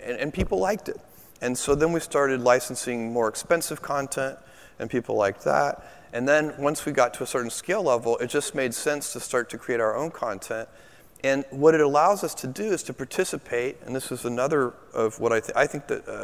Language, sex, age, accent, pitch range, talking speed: English, male, 30-49, American, 115-150 Hz, 220 wpm